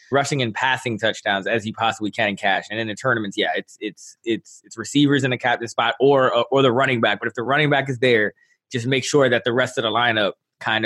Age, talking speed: 20-39, 260 wpm